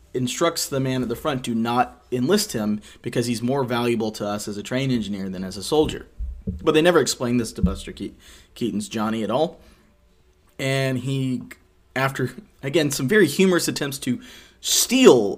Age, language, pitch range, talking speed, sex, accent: 30-49, English, 100-130 Hz, 175 wpm, male, American